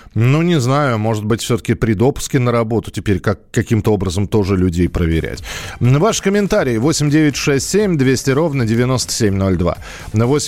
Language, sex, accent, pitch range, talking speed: Russian, male, native, 115-155 Hz, 130 wpm